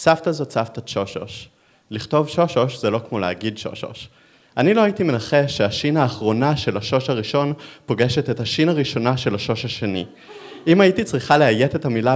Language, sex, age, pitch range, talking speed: Hebrew, male, 30-49, 110-145 Hz, 165 wpm